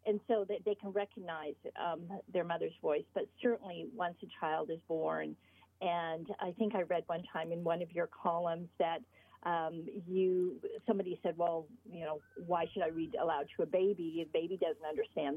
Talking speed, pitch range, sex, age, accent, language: 190 wpm, 170-210 Hz, female, 50-69, American, English